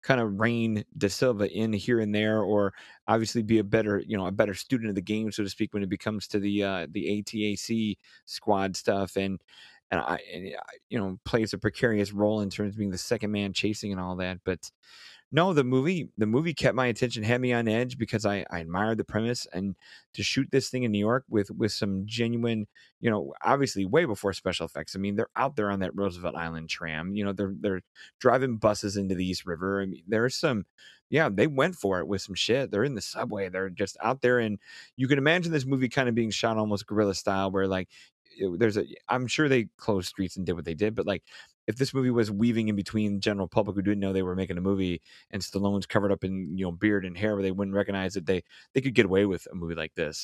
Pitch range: 95-115 Hz